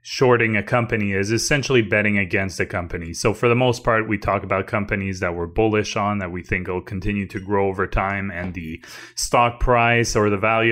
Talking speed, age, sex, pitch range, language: 215 wpm, 20-39, male, 95-115 Hz, English